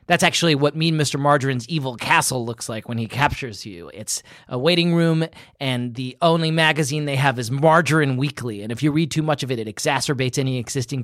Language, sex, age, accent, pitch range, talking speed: English, male, 30-49, American, 115-170 Hz, 210 wpm